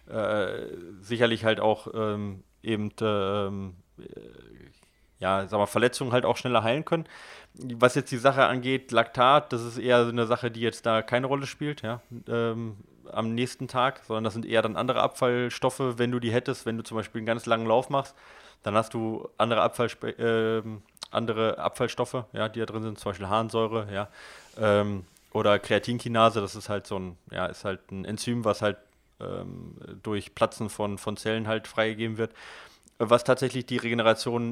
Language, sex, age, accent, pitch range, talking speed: German, male, 30-49, German, 110-125 Hz, 180 wpm